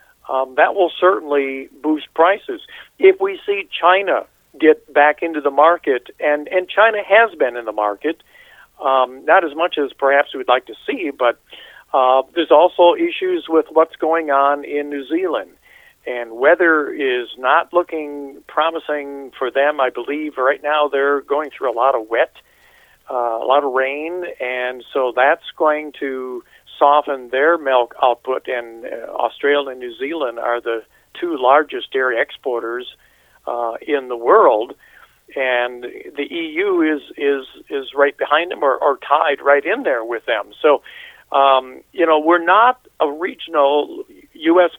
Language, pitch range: English, 135-175 Hz